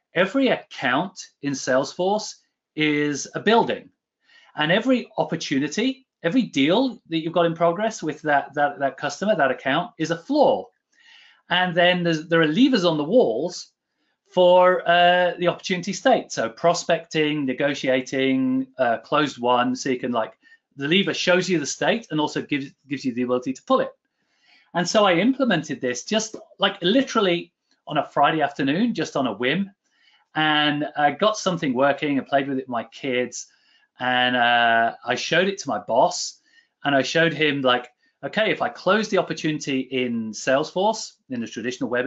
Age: 30-49